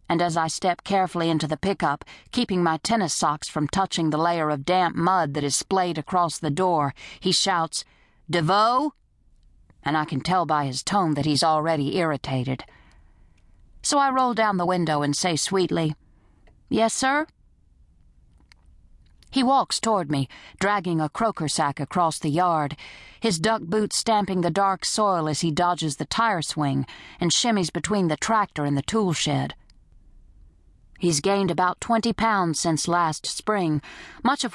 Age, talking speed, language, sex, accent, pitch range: 50-69, 160 wpm, English, female, American, 145-200 Hz